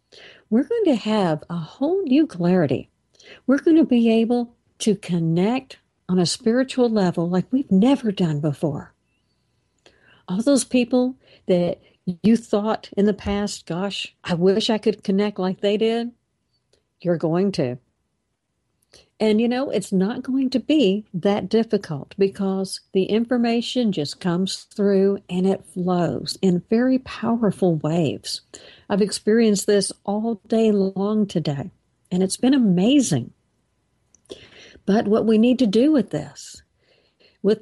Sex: female